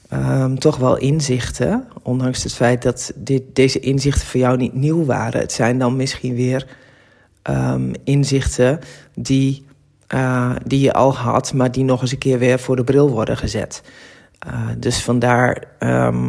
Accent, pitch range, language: Dutch, 120-140 Hz, Dutch